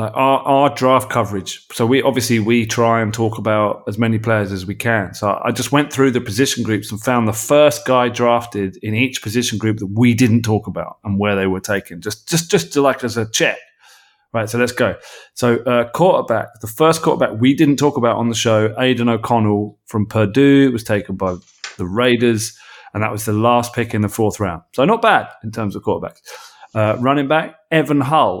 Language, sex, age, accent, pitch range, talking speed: English, male, 30-49, British, 105-130 Hz, 220 wpm